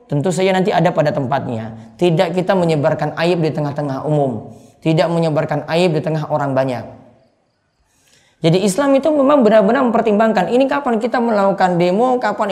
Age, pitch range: 20-39, 155-225 Hz